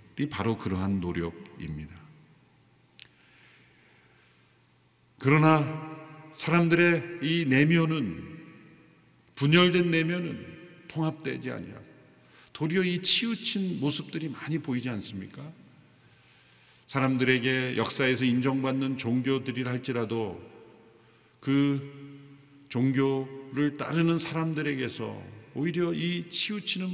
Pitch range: 130-170 Hz